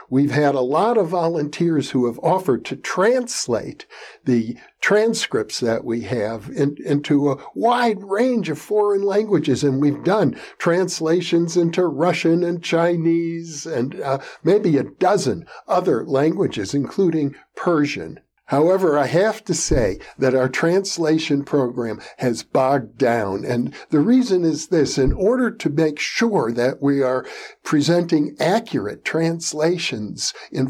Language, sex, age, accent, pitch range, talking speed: English, male, 60-79, American, 140-185 Hz, 135 wpm